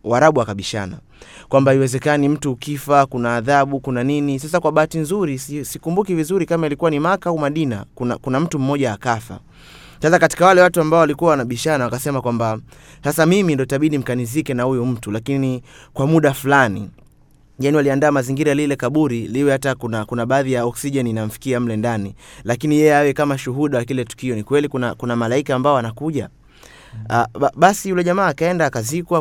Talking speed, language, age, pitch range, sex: 175 wpm, Swahili, 30-49, 125-155 Hz, male